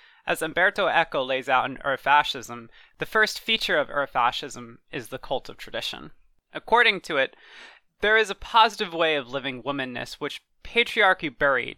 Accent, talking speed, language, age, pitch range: American, 160 wpm, English, 20-39, 135-185 Hz